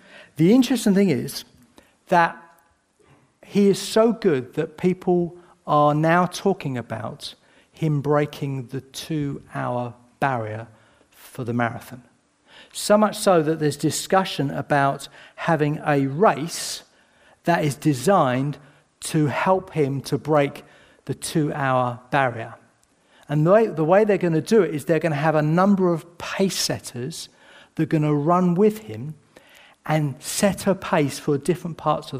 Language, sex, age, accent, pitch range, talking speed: English, male, 50-69, British, 130-175 Hz, 145 wpm